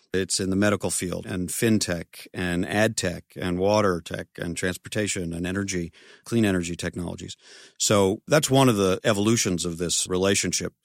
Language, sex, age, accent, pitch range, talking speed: English, male, 50-69, American, 90-110 Hz, 160 wpm